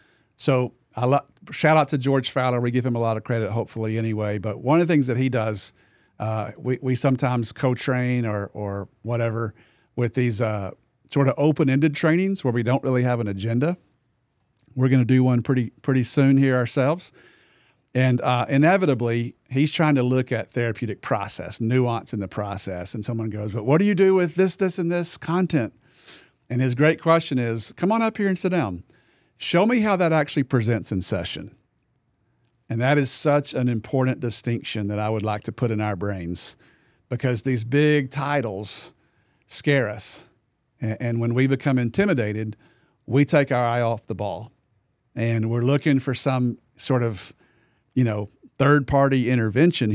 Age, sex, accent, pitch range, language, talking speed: 50-69, male, American, 110-140 Hz, English, 180 wpm